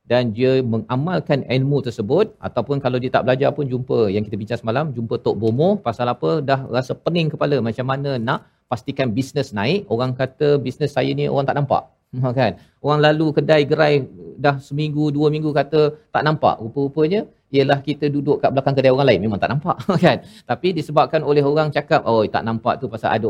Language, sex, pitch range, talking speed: Malayalam, male, 115-150 Hz, 195 wpm